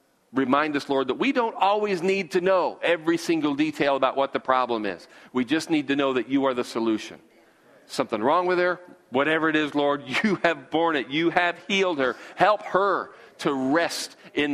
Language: English